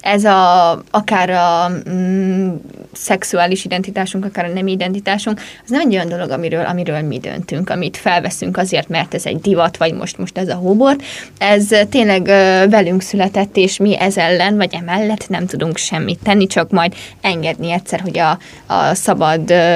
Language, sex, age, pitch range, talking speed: Hungarian, female, 20-39, 175-210 Hz, 170 wpm